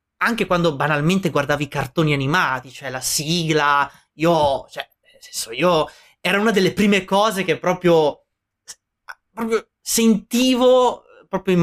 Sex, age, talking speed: male, 20-39, 135 wpm